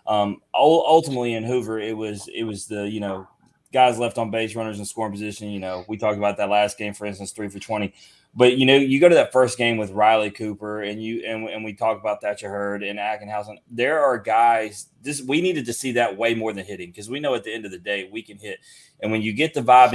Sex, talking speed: male, 260 wpm